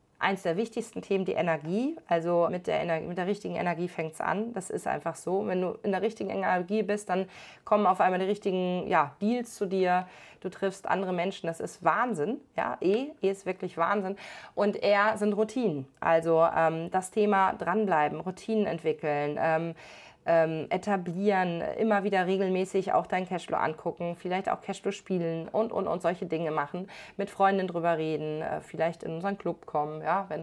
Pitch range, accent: 175-215 Hz, German